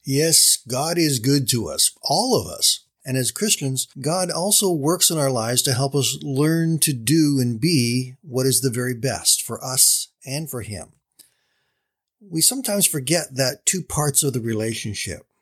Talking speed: 175 wpm